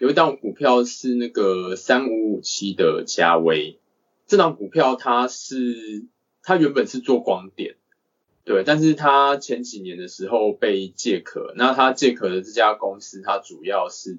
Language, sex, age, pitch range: Chinese, male, 20-39, 100-135 Hz